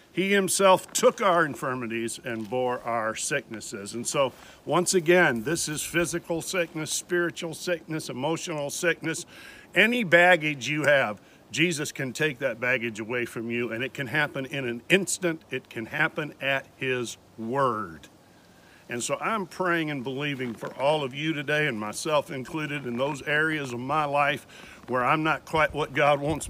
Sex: male